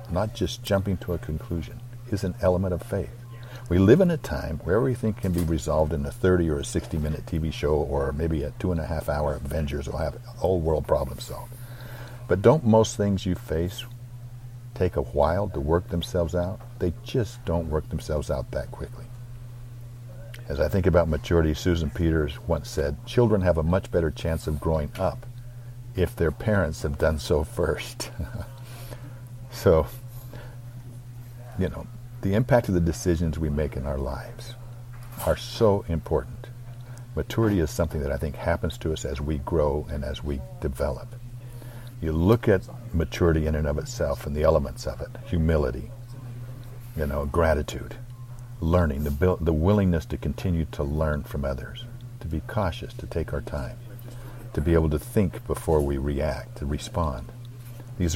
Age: 60-79